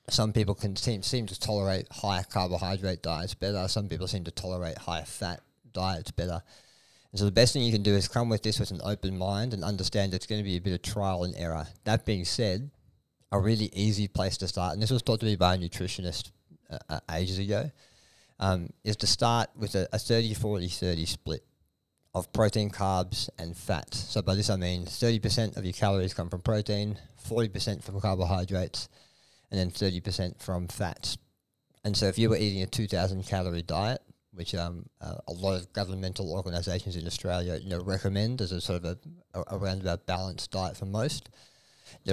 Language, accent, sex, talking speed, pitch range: English, Australian, male, 195 wpm, 90-110 Hz